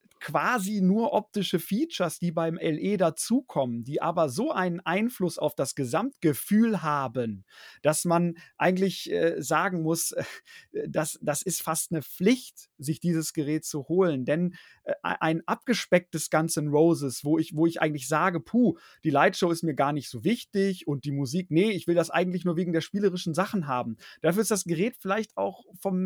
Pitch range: 155-190 Hz